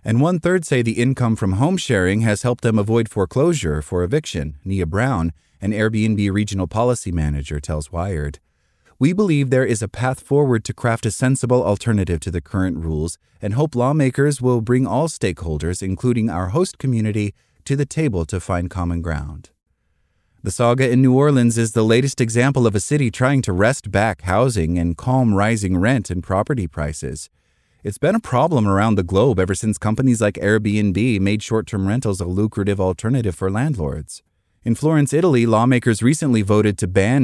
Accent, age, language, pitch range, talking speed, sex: American, 30-49, English, 95-130 Hz, 175 wpm, male